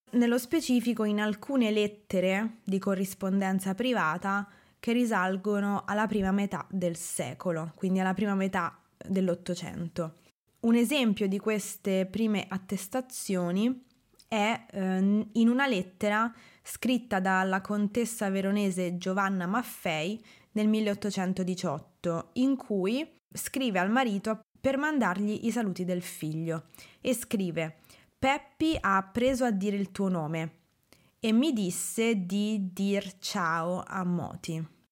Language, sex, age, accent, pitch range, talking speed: Italian, female, 20-39, native, 180-225 Hz, 115 wpm